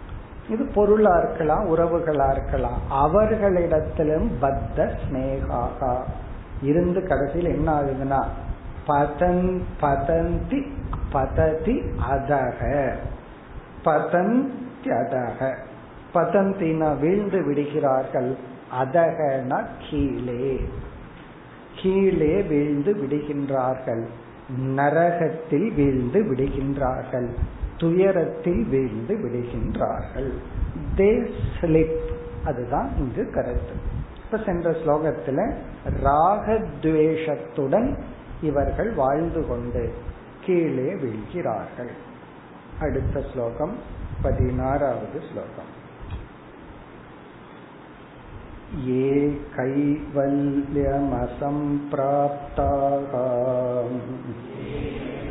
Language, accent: Tamil, native